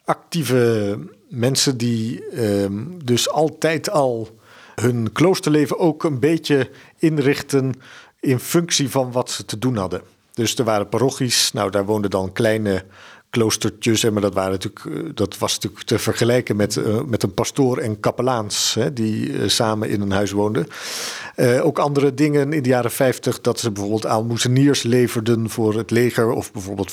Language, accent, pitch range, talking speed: Dutch, Dutch, 110-140 Hz, 160 wpm